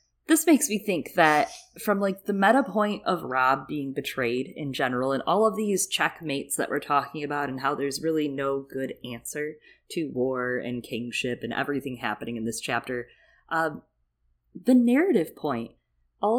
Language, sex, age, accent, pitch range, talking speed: English, female, 20-39, American, 135-200 Hz, 170 wpm